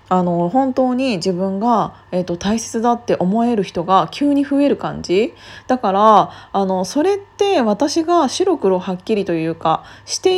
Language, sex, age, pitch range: Japanese, female, 20-39, 180-240 Hz